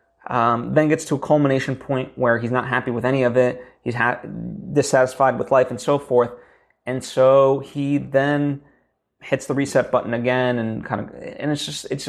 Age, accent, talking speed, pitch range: 20-39, American, 195 wpm, 125-165 Hz